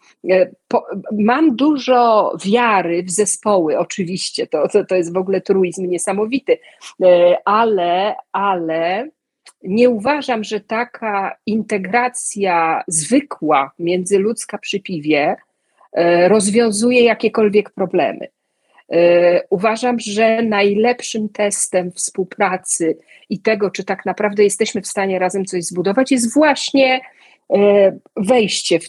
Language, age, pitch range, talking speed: Polish, 40-59, 180-225 Hz, 100 wpm